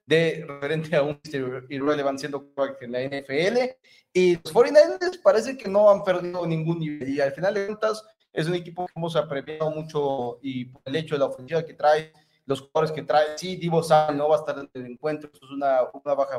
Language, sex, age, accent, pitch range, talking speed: Spanish, male, 30-49, Mexican, 140-175 Hz, 210 wpm